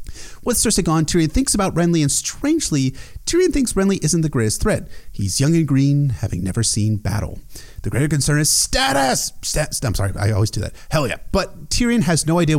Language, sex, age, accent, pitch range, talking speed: English, male, 30-49, American, 115-170 Hz, 205 wpm